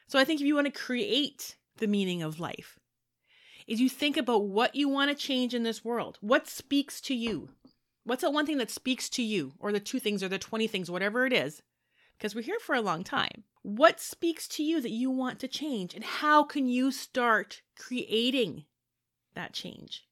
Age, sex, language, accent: 30-49, female, English, American